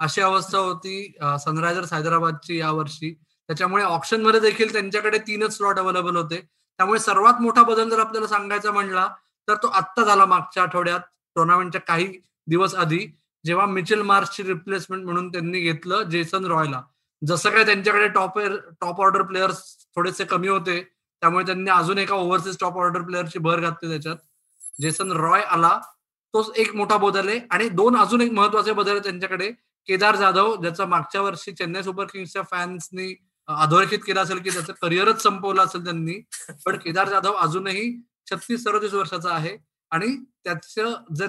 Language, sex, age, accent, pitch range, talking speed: Marathi, male, 20-39, native, 175-210 Hz, 155 wpm